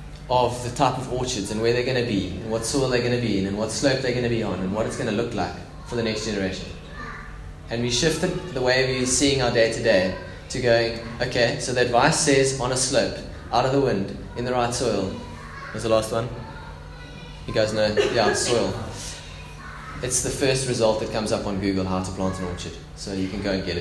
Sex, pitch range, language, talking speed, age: male, 95-125 Hz, English, 245 wpm, 20-39